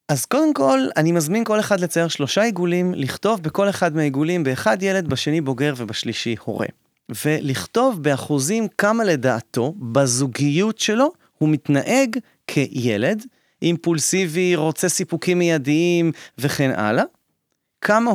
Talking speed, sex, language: 120 wpm, male, Hebrew